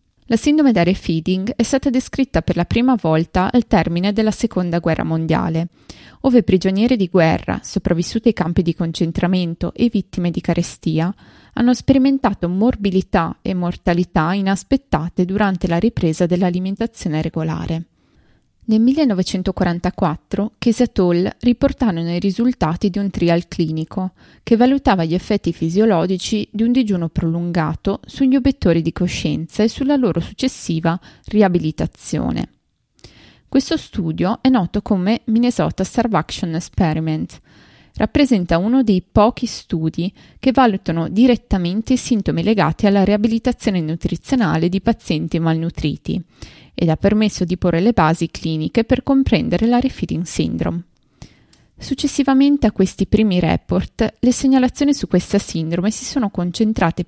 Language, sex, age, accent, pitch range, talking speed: Italian, female, 20-39, native, 170-235 Hz, 125 wpm